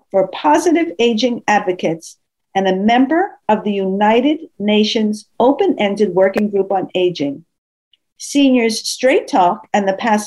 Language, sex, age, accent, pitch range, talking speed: English, female, 50-69, American, 185-260 Hz, 130 wpm